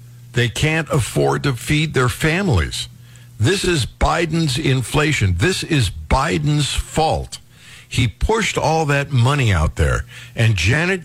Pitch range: 115-145 Hz